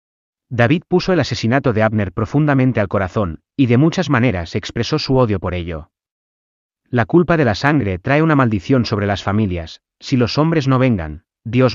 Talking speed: 180 wpm